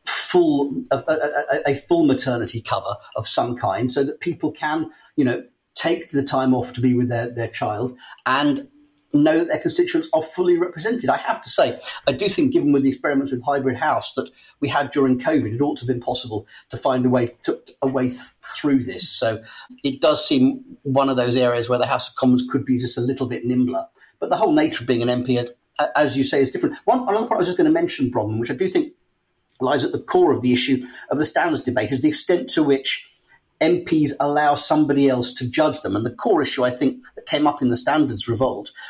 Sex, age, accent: male, 40-59, British